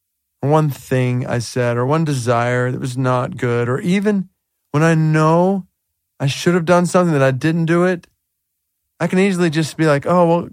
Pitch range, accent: 135-180 Hz, American